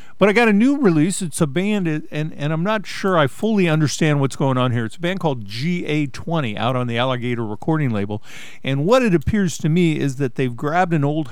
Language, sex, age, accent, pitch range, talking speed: English, male, 50-69, American, 125-170 Hz, 235 wpm